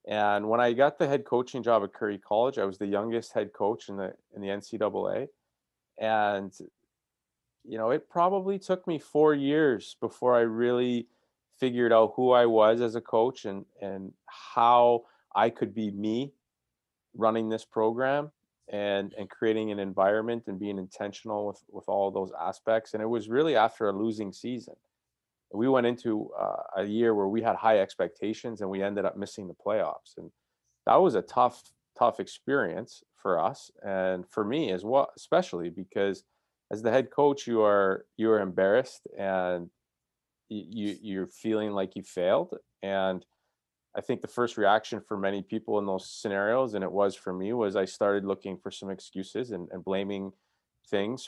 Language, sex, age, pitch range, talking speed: English, male, 30-49, 95-120 Hz, 180 wpm